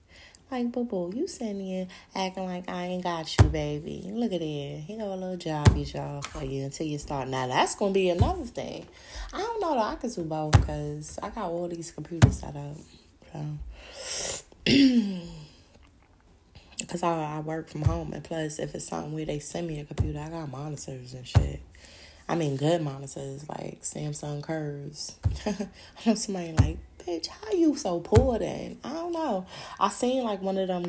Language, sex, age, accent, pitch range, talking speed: English, female, 20-39, American, 110-180 Hz, 190 wpm